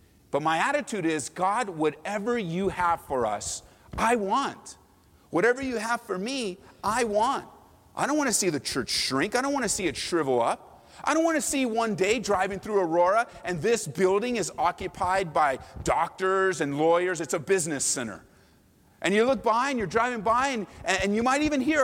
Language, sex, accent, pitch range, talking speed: English, male, American, 175-270 Hz, 200 wpm